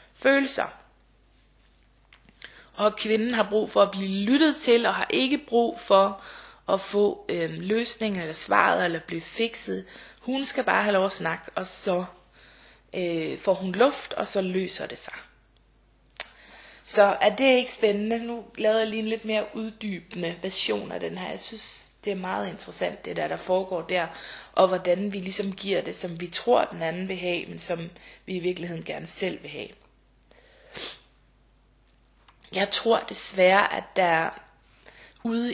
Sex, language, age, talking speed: female, Danish, 20-39, 165 wpm